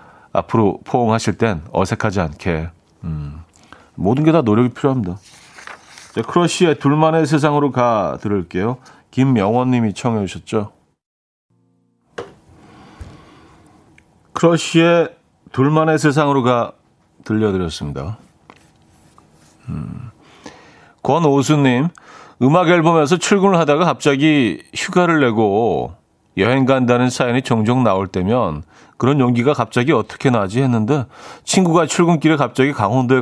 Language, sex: Korean, male